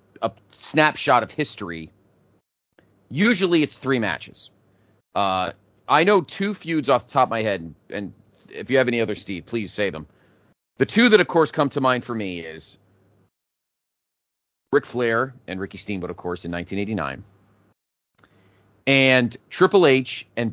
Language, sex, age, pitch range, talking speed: English, male, 30-49, 95-150 Hz, 160 wpm